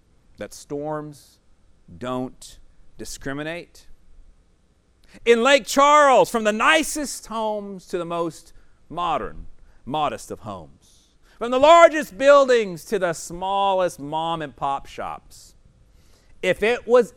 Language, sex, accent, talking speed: English, male, American, 110 wpm